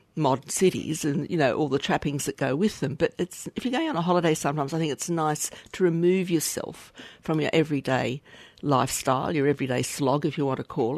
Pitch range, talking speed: 130-155 Hz, 220 wpm